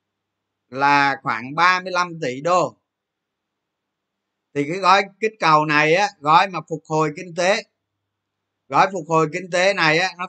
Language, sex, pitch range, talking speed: Vietnamese, male, 110-180 Hz, 150 wpm